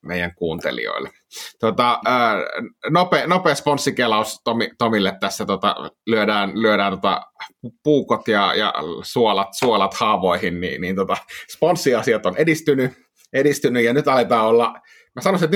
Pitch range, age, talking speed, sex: 100-125 Hz, 30-49, 125 wpm, male